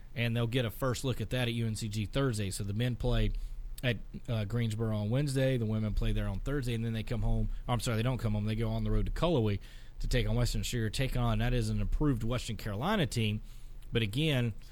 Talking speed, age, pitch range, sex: 245 wpm, 30-49, 115-135 Hz, male